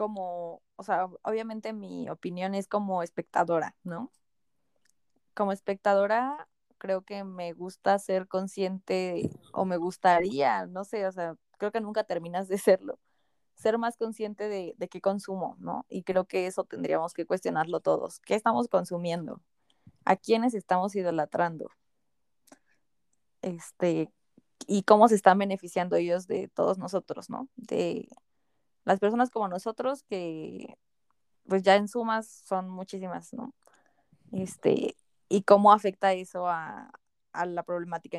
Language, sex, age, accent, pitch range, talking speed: Spanish, female, 20-39, Mexican, 175-210 Hz, 135 wpm